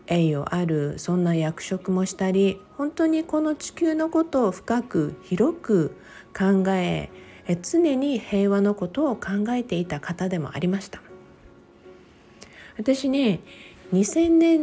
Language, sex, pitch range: Japanese, female, 170-240 Hz